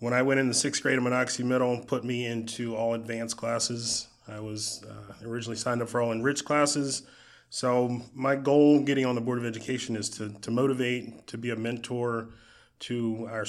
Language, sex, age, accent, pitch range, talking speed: English, male, 20-39, American, 110-130 Hz, 200 wpm